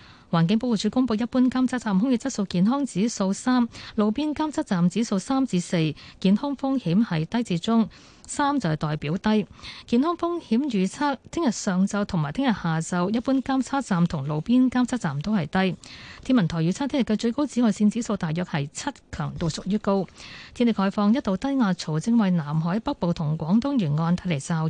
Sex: female